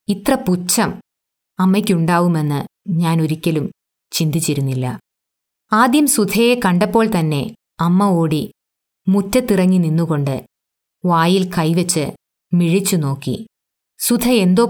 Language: Malayalam